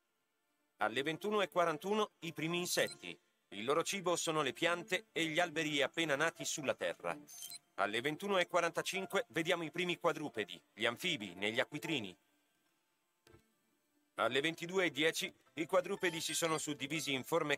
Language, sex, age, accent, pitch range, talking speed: Italian, male, 40-59, native, 145-180 Hz, 125 wpm